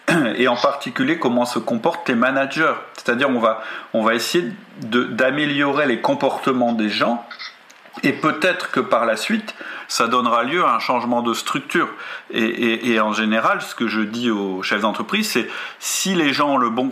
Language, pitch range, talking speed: French, 110-135 Hz, 190 wpm